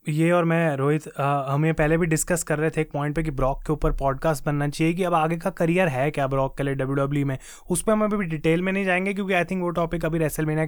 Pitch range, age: 145-170 Hz, 20-39